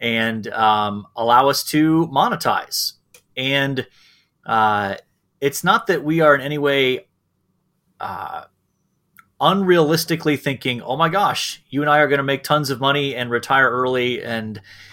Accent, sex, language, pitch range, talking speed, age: American, male, English, 115-150 Hz, 145 wpm, 30-49